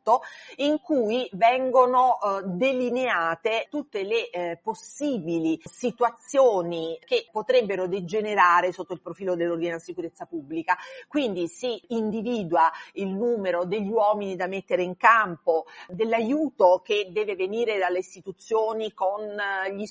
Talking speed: 110 wpm